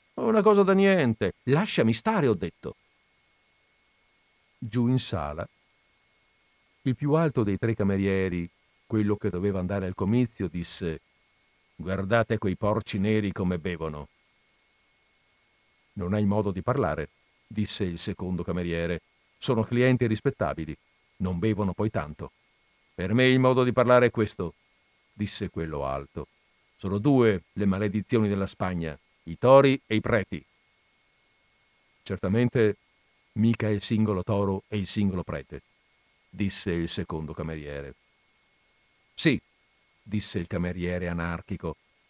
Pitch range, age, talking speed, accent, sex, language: 90-120 Hz, 50-69, 125 wpm, native, male, Italian